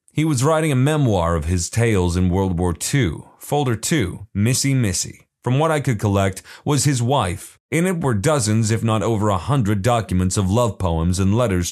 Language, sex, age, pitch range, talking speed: English, male, 30-49, 95-130 Hz, 200 wpm